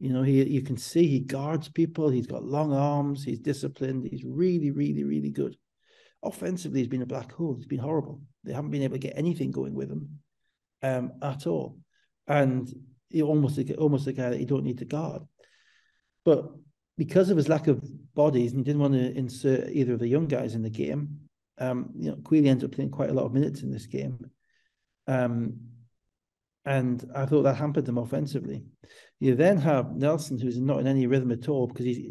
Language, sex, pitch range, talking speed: English, male, 130-150 Hz, 205 wpm